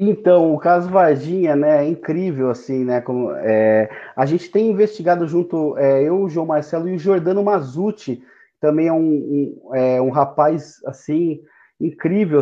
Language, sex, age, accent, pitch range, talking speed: Portuguese, male, 30-49, Brazilian, 140-175 Hz, 165 wpm